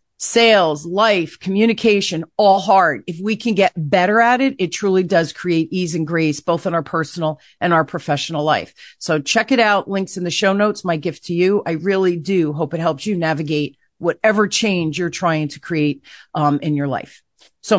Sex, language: female, English